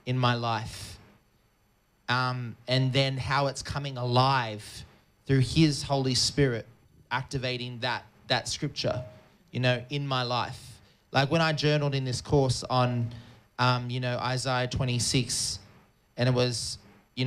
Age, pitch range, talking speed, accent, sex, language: 30-49, 120-140 Hz, 140 wpm, Australian, male, English